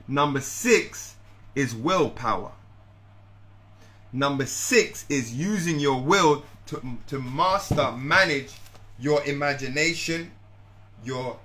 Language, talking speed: English, 90 wpm